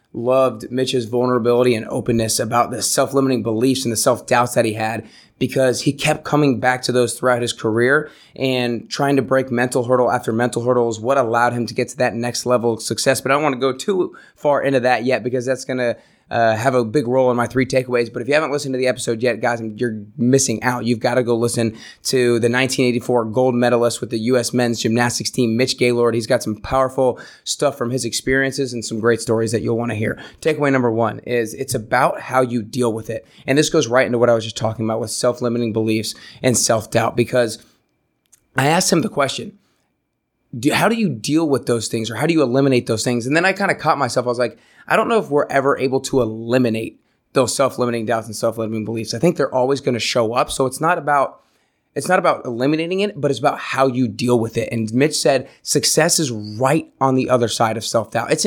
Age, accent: 20-39, American